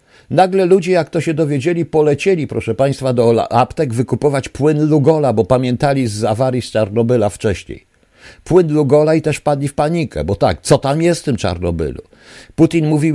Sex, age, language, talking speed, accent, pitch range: male, 50-69, Polish, 175 wpm, native, 110-160 Hz